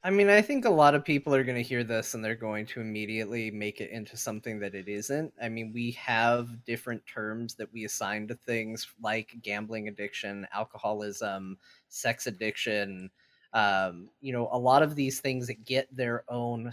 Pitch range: 110-130 Hz